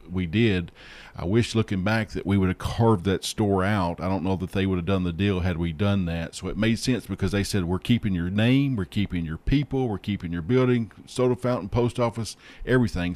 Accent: American